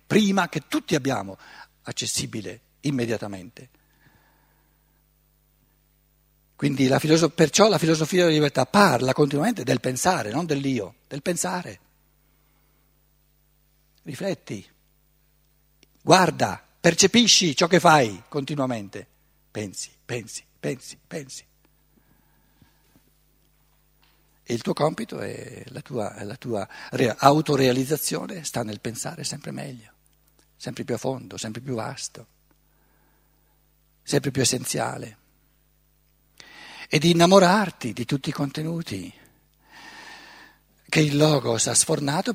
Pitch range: 125-155 Hz